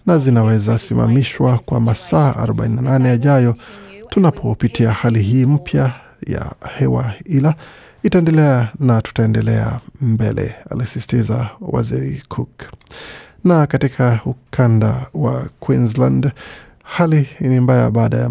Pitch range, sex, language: 115-135 Hz, male, Swahili